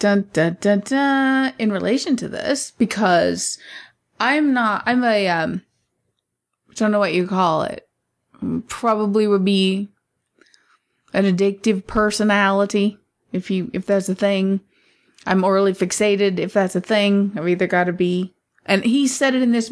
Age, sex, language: 20-39, female, English